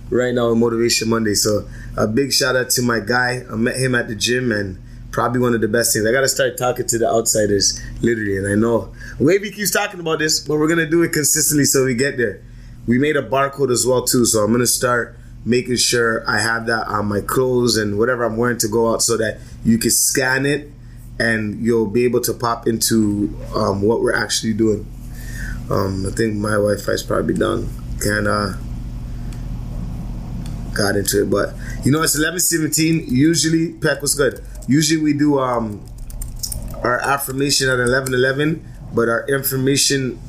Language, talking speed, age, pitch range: English, 190 wpm, 20-39, 115-135 Hz